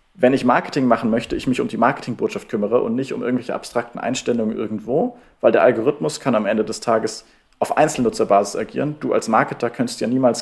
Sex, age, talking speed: male, 40-59, 200 wpm